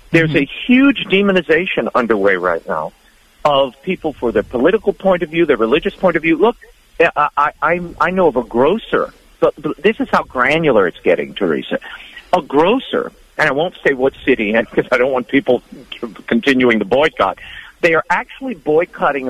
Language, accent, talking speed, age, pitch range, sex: English, American, 175 wpm, 50-69, 150-245 Hz, male